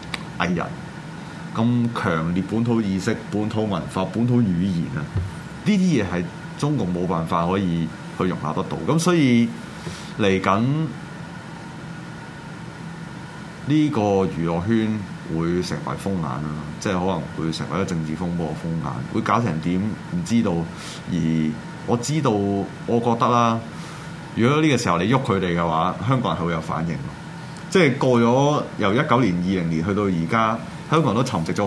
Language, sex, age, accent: Chinese, male, 30-49, native